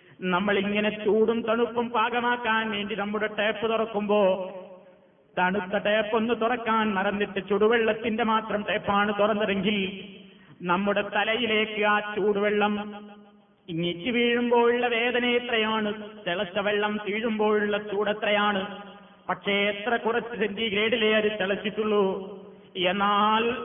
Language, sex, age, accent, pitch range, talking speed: Malayalam, male, 20-39, native, 200-220 Hz, 90 wpm